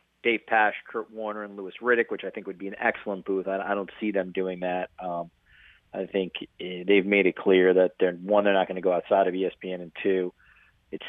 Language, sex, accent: English, male, American